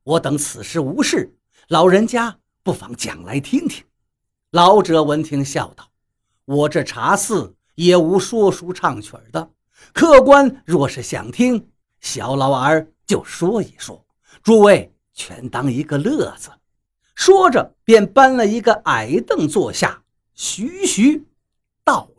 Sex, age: male, 50-69